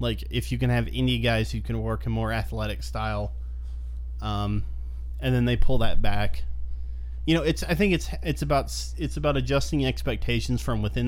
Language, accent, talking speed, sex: English, American, 190 wpm, male